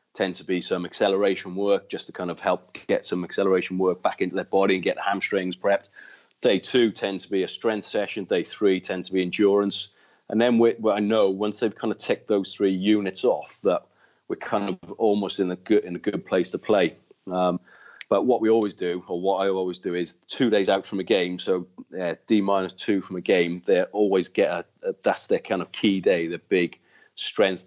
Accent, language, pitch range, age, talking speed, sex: British, English, 95-110 Hz, 30-49, 230 wpm, male